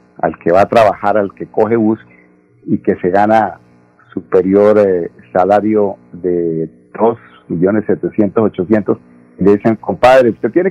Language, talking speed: Spanish, 140 wpm